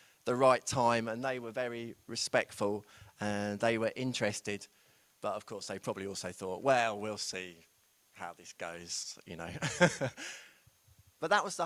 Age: 20-39